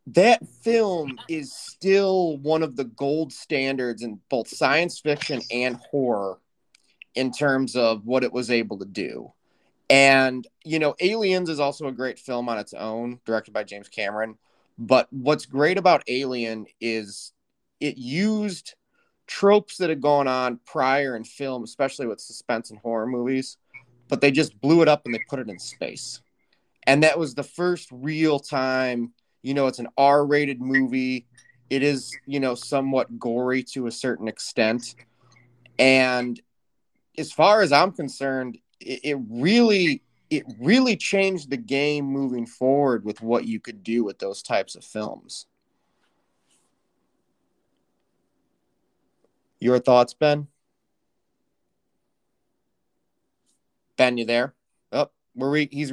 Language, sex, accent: English, male, American